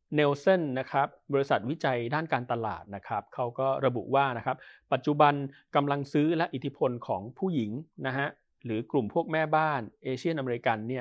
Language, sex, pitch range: Thai, male, 120-145 Hz